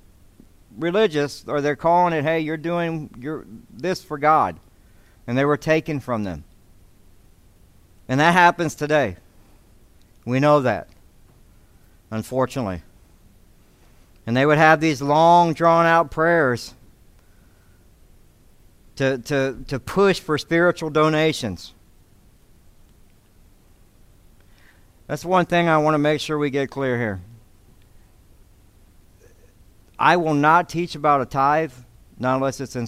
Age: 60-79